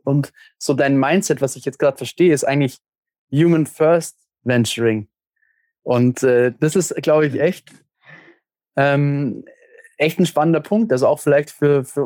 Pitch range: 130-155 Hz